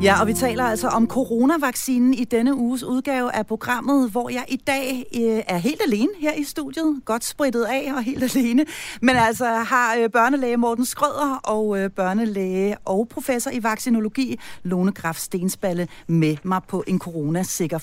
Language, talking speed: Danish, 165 wpm